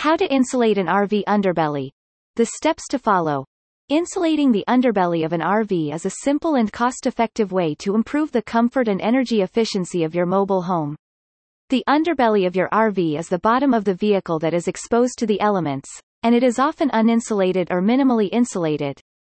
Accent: American